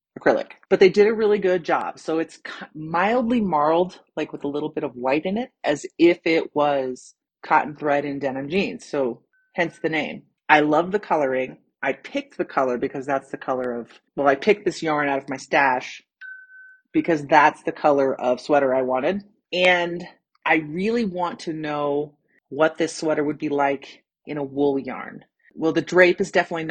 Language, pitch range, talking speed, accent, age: English, 140-180 Hz, 190 wpm, American, 30-49